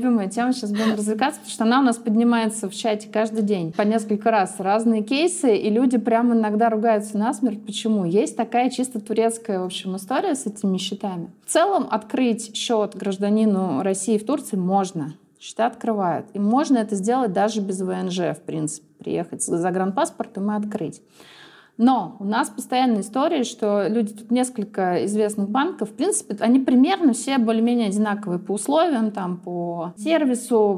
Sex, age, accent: female, 20-39, native